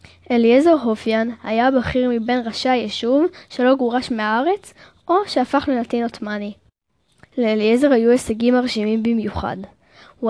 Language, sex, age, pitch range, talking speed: Hebrew, female, 10-29, 215-260 Hz, 115 wpm